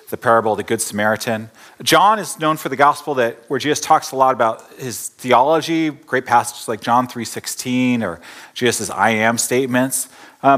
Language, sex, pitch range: English, male, 115-150 Hz